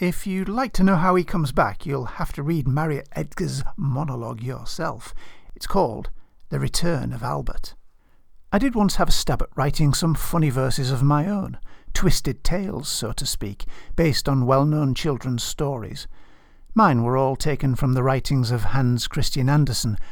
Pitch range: 125-175 Hz